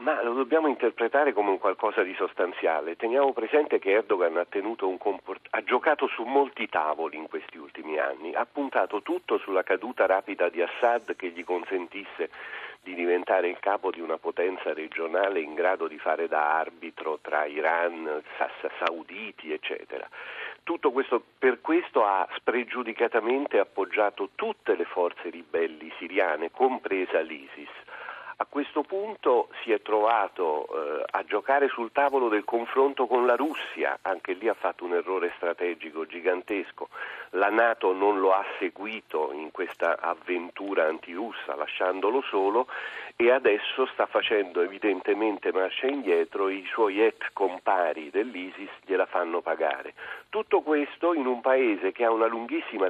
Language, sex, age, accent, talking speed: Italian, male, 40-59, native, 145 wpm